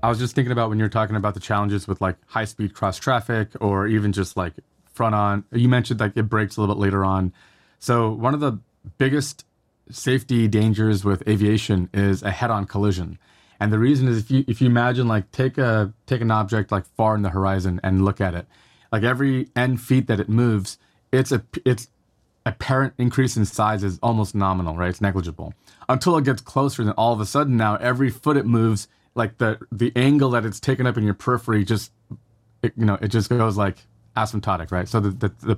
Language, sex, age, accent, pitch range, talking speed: English, male, 20-39, American, 100-120 Hz, 215 wpm